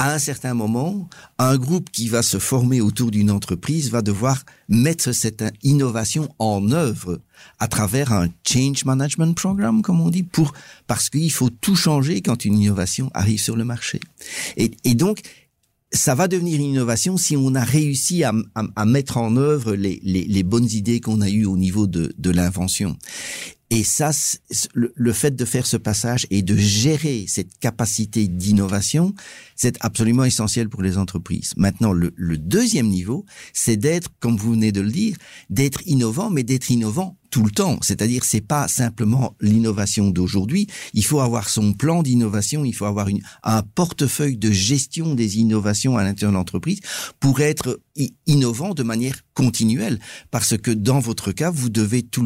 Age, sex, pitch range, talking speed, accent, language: 50-69, male, 105-140 Hz, 180 wpm, French, French